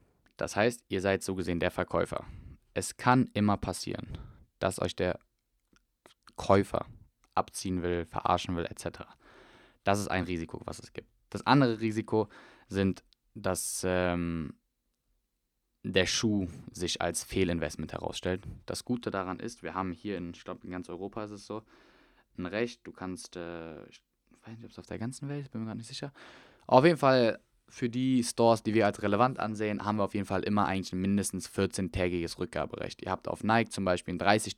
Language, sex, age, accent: German, male, 20-39, German